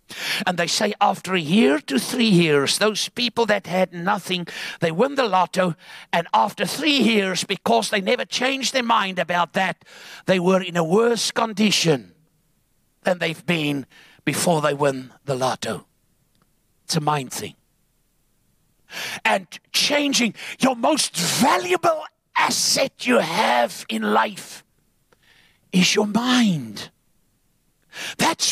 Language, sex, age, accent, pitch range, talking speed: English, male, 60-79, British, 175-280 Hz, 130 wpm